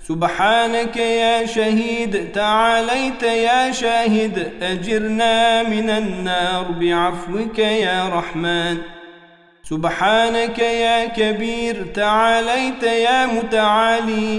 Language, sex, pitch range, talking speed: Turkish, male, 175-230 Hz, 75 wpm